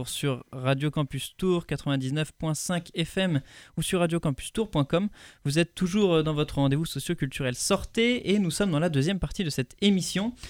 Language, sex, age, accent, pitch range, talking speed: French, male, 20-39, French, 125-170 Hz, 165 wpm